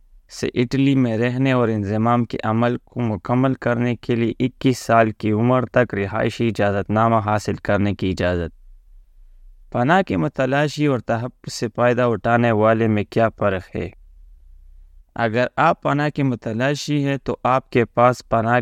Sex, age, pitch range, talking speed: male, 20-39, 105-125 Hz, 160 wpm